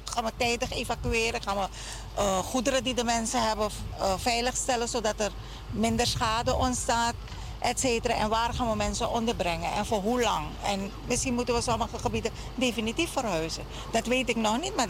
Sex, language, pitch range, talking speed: female, Dutch, 175-235 Hz, 180 wpm